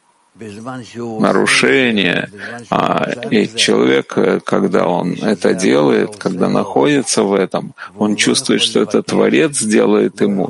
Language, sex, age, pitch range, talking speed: Russian, male, 40-59, 95-125 Hz, 110 wpm